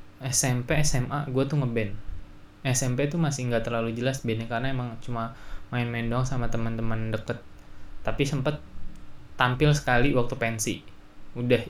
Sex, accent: male, native